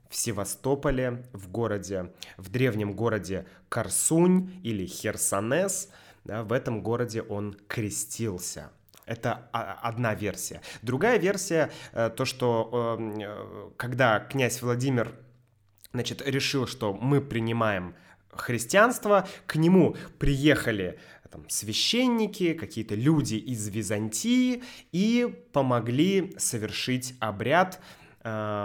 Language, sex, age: Russian, male, 20-39